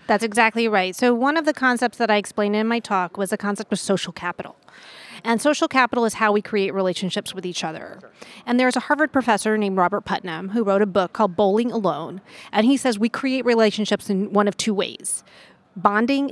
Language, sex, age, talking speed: English, female, 30-49, 215 wpm